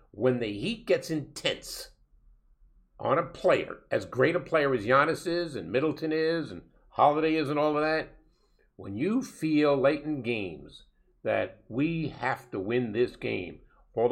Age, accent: 50-69, American